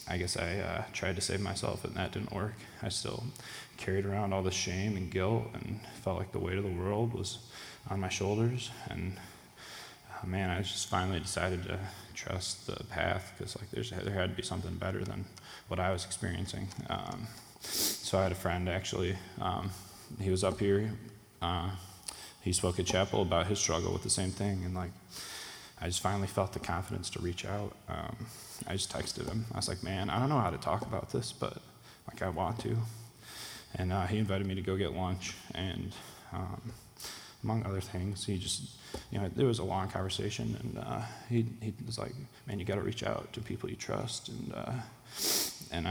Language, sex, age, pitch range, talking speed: English, male, 20-39, 95-115 Hz, 205 wpm